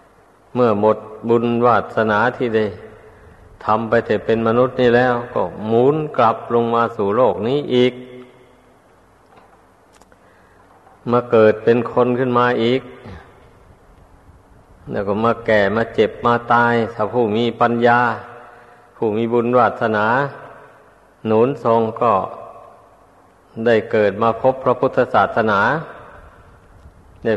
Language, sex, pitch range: Thai, male, 105-120 Hz